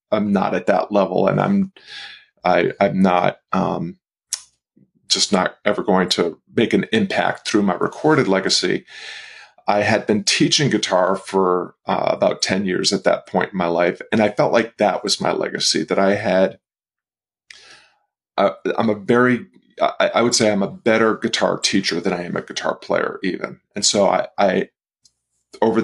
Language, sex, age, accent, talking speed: English, male, 40-59, American, 175 wpm